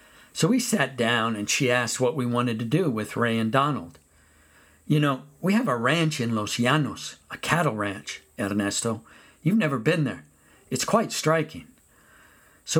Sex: male